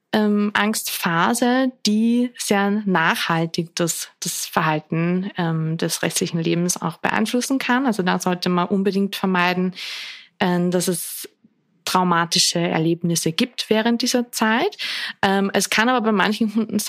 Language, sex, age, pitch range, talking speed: German, female, 20-39, 180-220 Hz, 130 wpm